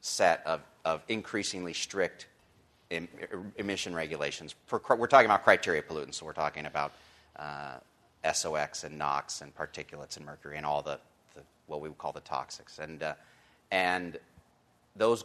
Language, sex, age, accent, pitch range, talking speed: English, male, 30-49, American, 75-95 Hz, 150 wpm